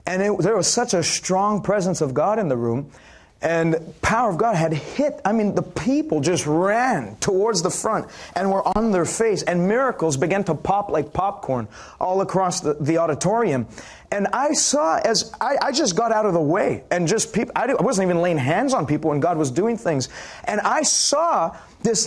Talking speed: 210 wpm